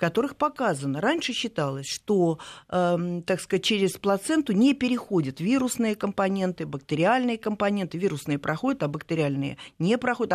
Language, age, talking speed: Russian, 50-69, 130 wpm